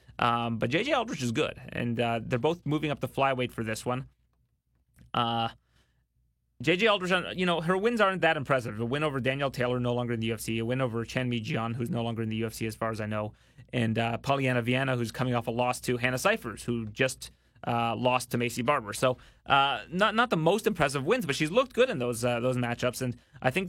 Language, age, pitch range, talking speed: English, 30-49, 115-140 Hz, 235 wpm